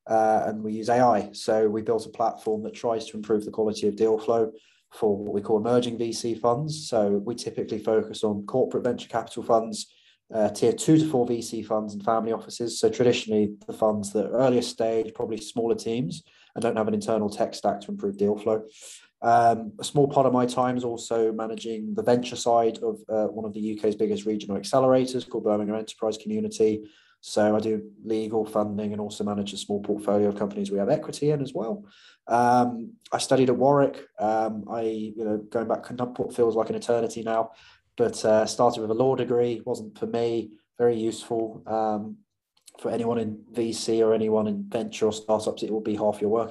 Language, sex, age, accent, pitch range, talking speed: English, male, 20-39, British, 110-120 Hz, 205 wpm